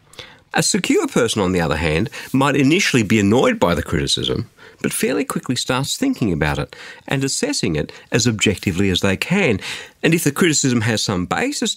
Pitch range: 105-155 Hz